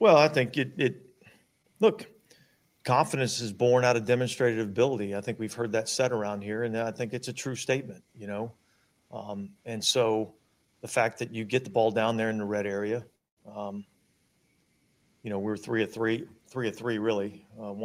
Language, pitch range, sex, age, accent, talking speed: English, 105-115 Hz, male, 40-59, American, 200 wpm